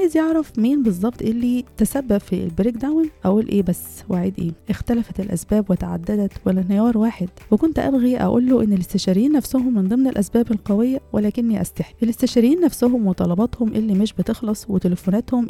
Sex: female